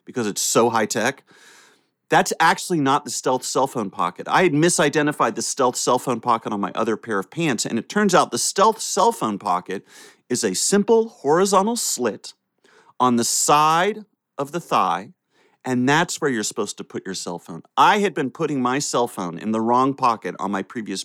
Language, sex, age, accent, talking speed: English, male, 30-49, American, 200 wpm